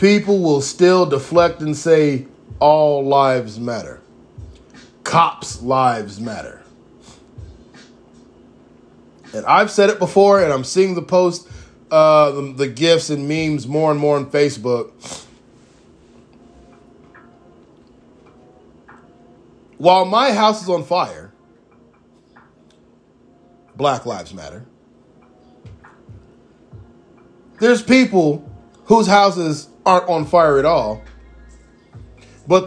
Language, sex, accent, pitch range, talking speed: English, male, American, 140-220 Hz, 95 wpm